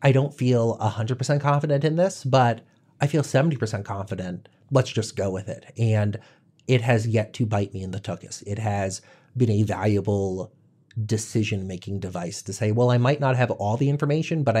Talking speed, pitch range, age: 185 wpm, 110-140 Hz, 30-49